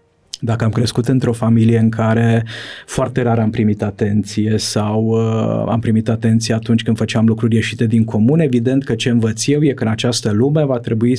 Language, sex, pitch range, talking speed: Romanian, male, 110-130 Hz, 195 wpm